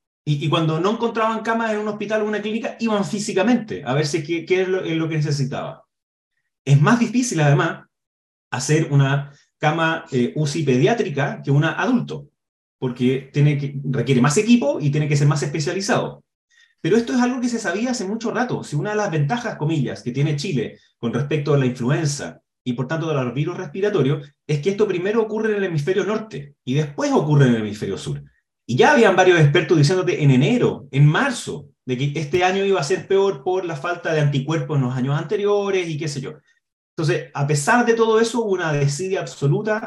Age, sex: 30-49, male